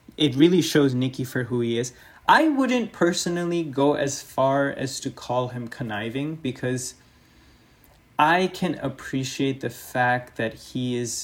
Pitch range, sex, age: 115-150 Hz, male, 20-39